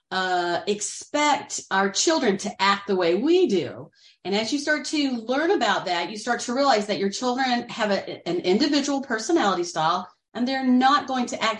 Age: 40-59